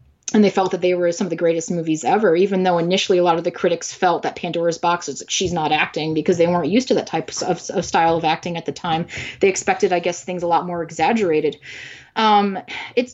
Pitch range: 170-205 Hz